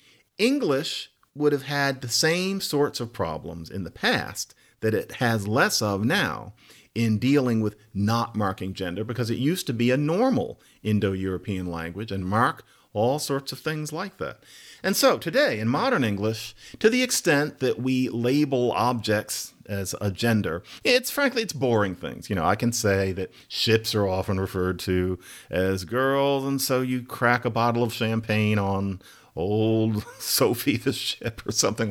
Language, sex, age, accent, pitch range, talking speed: English, male, 50-69, American, 100-135 Hz, 170 wpm